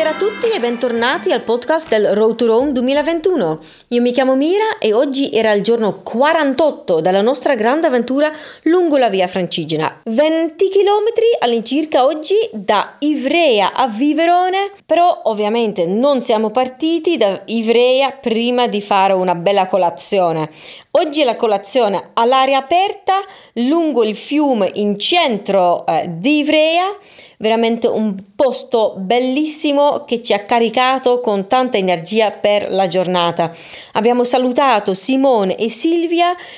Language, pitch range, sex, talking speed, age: Italian, 200-295 Hz, female, 140 wpm, 30-49